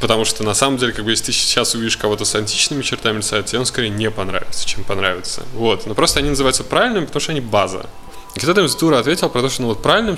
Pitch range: 105-125 Hz